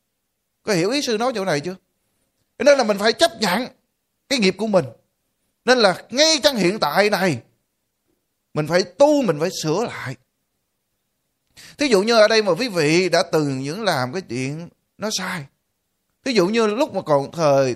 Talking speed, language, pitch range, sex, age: 185 wpm, Vietnamese, 150-230 Hz, male, 20-39